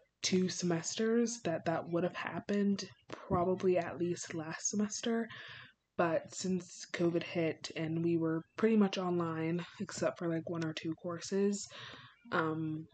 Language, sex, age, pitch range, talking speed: English, female, 20-39, 160-195 Hz, 140 wpm